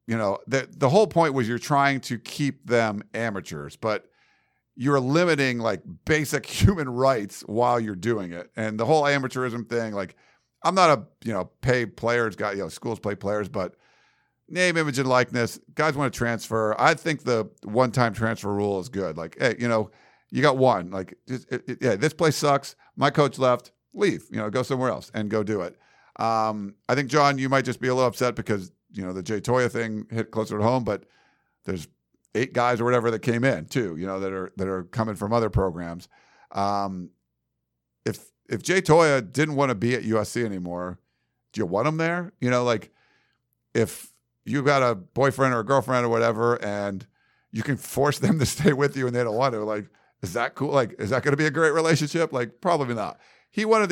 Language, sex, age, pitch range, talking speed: English, male, 50-69, 105-135 Hz, 210 wpm